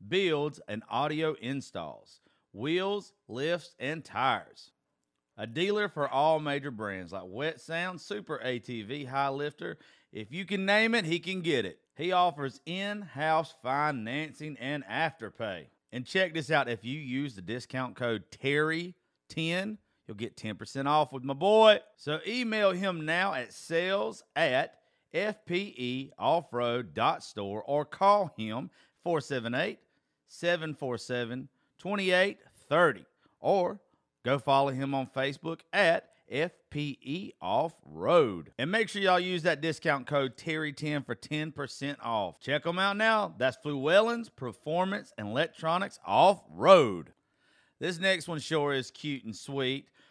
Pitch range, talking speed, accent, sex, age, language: 130-180 Hz, 130 wpm, American, male, 40-59, English